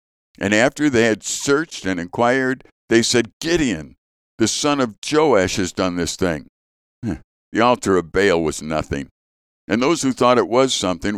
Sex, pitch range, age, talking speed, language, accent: male, 85-125 Hz, 60-79, 165 wpm, English, American